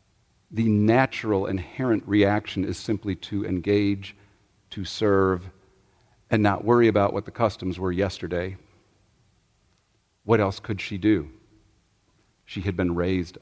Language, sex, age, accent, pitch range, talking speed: English, male, 50-69, American, 95-115 Hz, 125 wpm